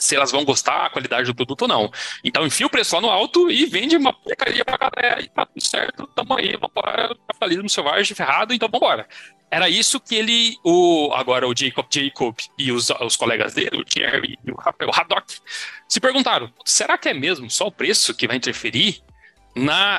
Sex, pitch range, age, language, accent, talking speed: male, 190-275 Hz, 30-49, Portuguese, Brazilian, 210 wpm